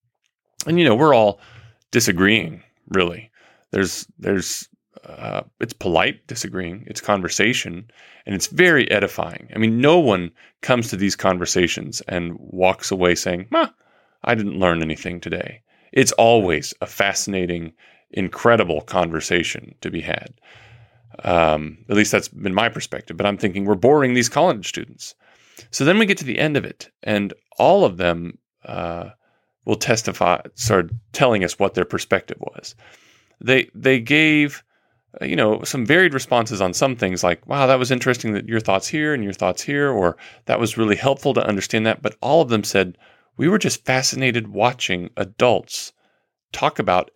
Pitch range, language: 95-125 Hz, English